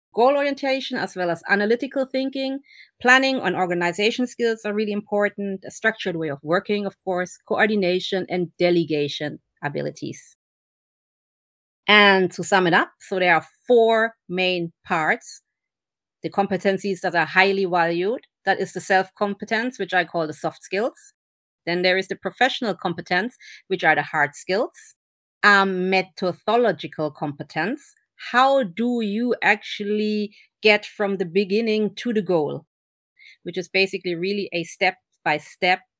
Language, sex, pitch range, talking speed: Turkish, female, 180-225 Hz, 140 wpm